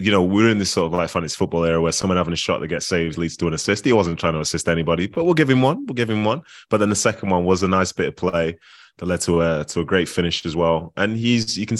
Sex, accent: male, British